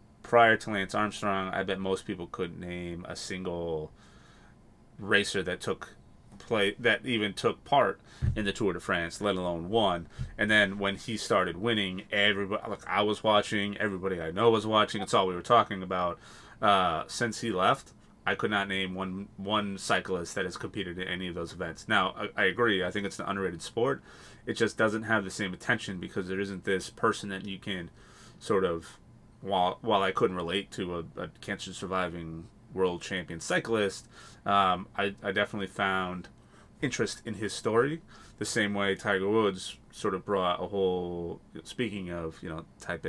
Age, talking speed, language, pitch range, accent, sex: 30-49, 185 wpm, English, 90-105 Hz, American, male